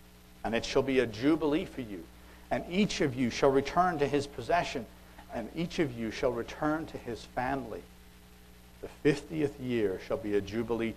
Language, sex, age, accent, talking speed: English, male, 60-79, American, 180 wpm